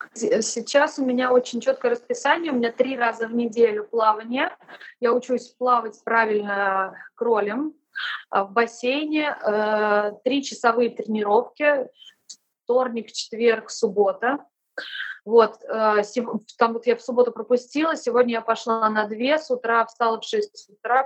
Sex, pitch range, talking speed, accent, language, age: female, 215-260 Hz, 125 wpm, native, Russian, 20-39